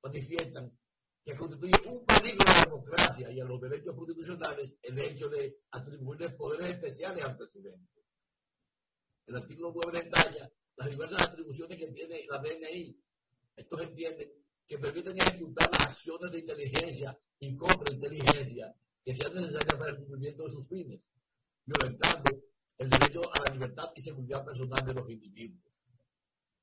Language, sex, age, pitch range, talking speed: Spanish, male, 60-79, 135-170 Hz, 145 wpm